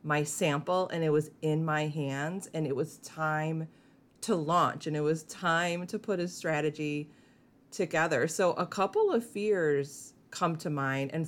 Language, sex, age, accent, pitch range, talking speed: English, female, 30-49, American, 155-205 Hz, 170 wpm